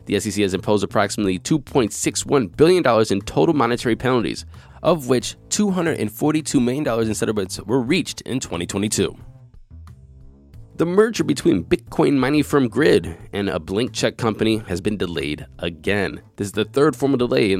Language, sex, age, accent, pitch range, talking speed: English, male, 20-39, American, 100-130 Hz, 150 wpm